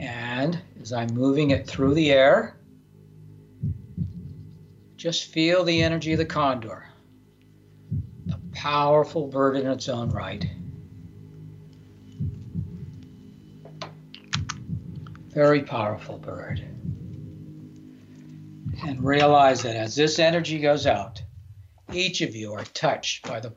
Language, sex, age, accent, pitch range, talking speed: English, male, 60-79, American, 125-150 Hz, 100 wpm